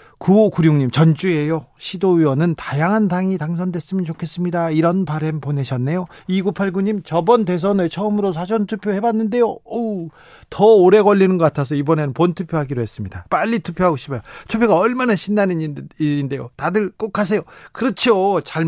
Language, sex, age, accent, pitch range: Korean, male, 40-59, native, 140-200 Hz